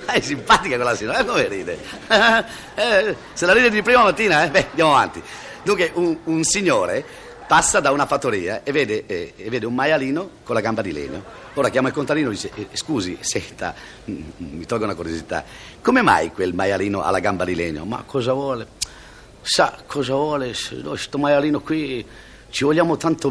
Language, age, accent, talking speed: Italian, 50-69, native, 185 wpm